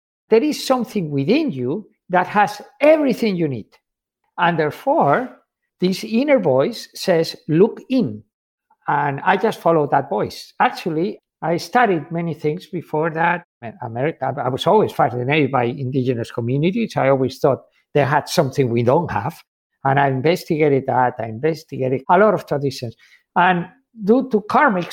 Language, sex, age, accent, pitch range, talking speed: English, male, 50-69, Spanish, 140-210 Hz, 150 wpm